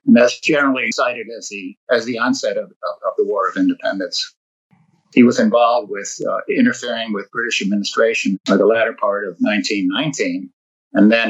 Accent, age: American, 50-69